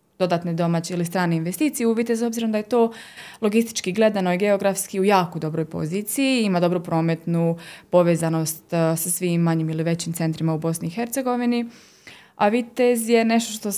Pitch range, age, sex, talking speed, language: 170-210 Hz, 20-39, female, 160 wpm, Croatian